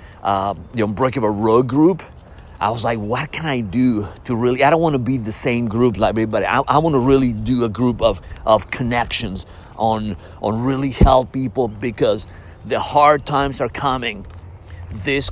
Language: English